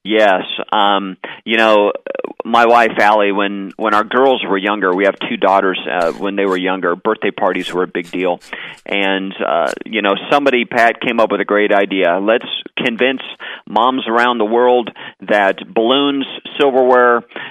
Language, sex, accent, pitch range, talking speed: English, male, American, 95-125 Hz, 170 wpm